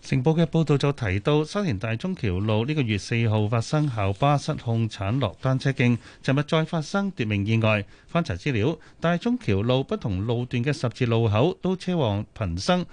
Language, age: Chinese, 30-49